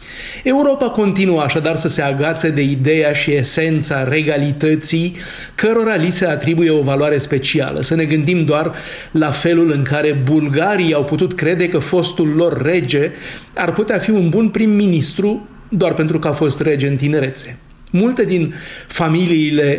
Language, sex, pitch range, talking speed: Romanian, male, 150-185 Hz, 155 wpm